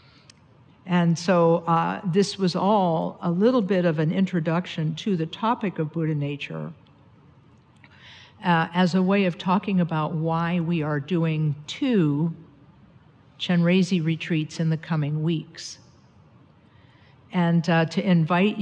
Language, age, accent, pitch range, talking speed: English, 50-69, American, 155-180 Hz, 130 wpm